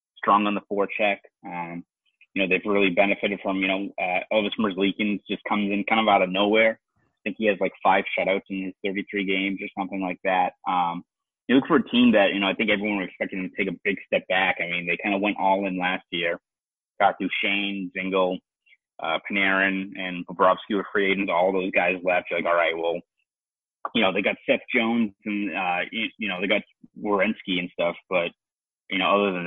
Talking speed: 225 wpm